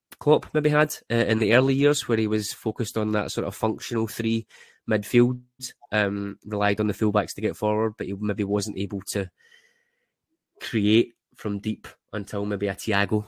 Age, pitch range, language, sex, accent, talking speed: 20-39, 100-110 Hz, English, male, British, 180 wpm